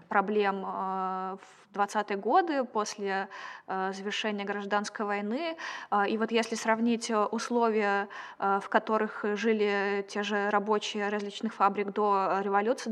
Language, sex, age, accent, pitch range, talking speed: Russian, female, 20-39, native, 200-230 Hz, 105 wpm